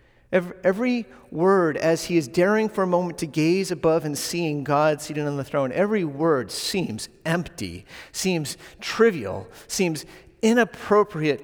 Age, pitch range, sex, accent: 40-59, 145-190 Hz, male, American